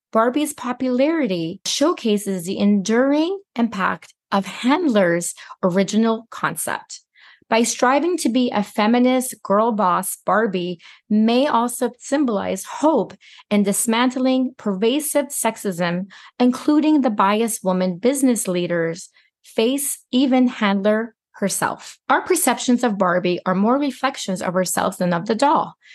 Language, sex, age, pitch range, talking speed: English, female, 30-49, 200-265 Hz, 115 wpm